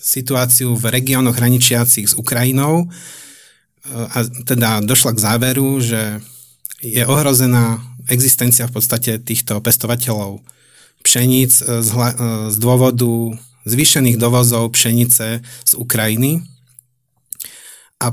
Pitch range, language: 115-130 Hz, Slovak